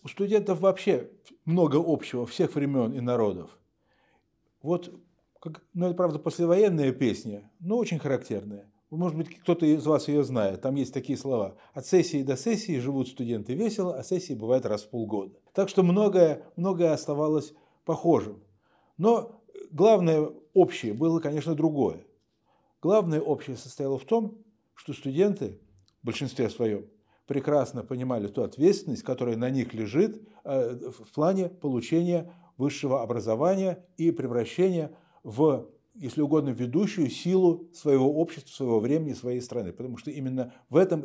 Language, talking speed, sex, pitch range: Russian, 140 wpm, male, 125-175 Hz